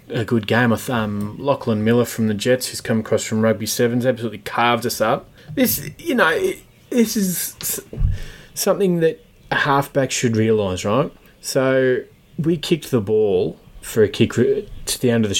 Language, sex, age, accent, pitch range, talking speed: English, male, 20-39, Australian, 110-145 Hz, 170 wpm